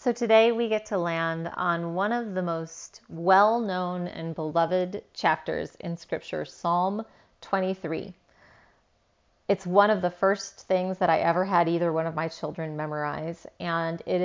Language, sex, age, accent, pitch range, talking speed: English, female, 30-49, American, 165-200 Hz, 155 wpm